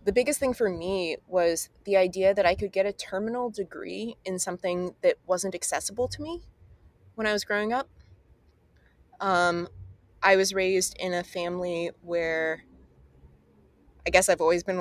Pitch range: 165-200 Hz